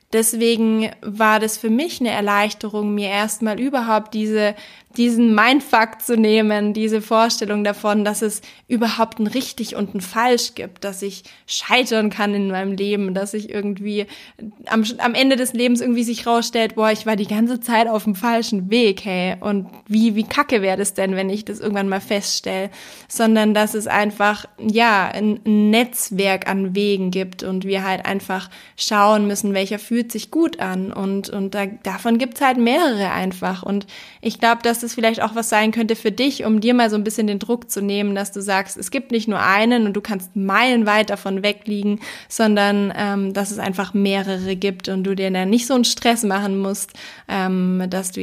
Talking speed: 195 wpm